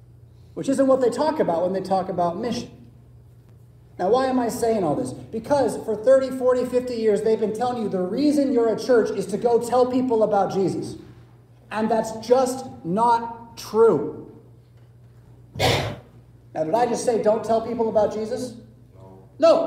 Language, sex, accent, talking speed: English, male, American, 170 wpm